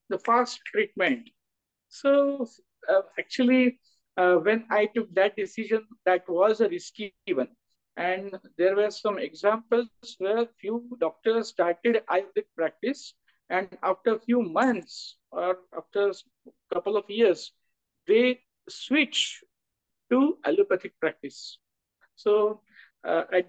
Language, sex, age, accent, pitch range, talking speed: English, male, 50-69, Indian, 180-245 Hz, 120 wpm